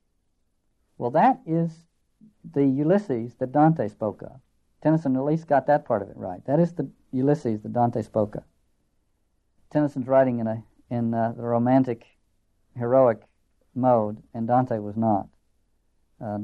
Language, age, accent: English, 60-79, American